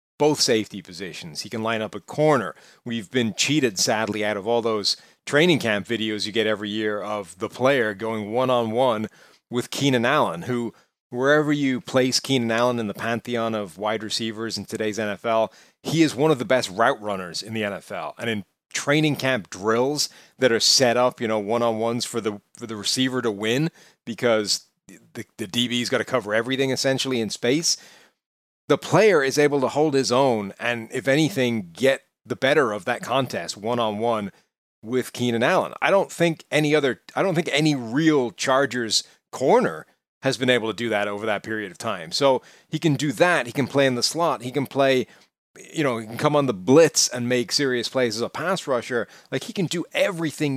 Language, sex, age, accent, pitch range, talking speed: English, male, 30-49, American, 110-135 Hz, 200 wpm